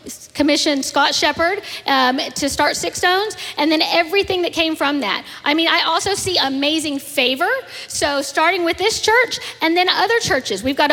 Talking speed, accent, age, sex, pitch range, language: 180 wpm, American, 40-59, female, 285-360 Hz, English